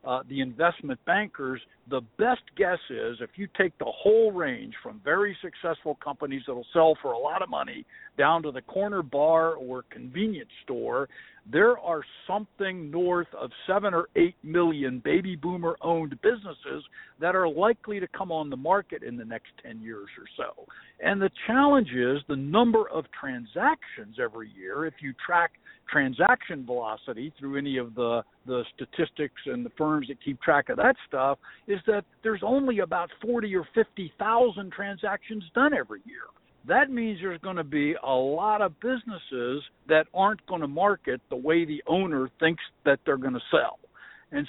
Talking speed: 175 wpm